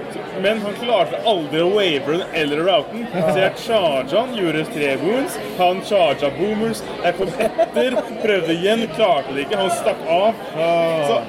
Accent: Norwegian